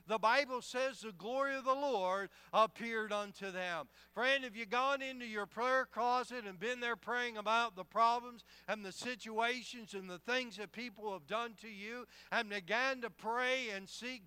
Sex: male